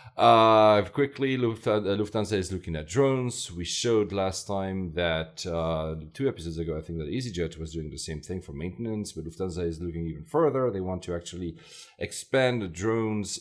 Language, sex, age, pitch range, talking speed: English, male, 40-59, 85-105 Hz, 175 wpm